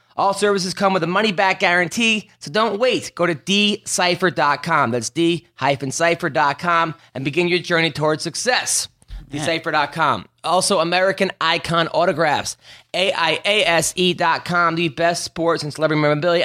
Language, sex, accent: English, male, American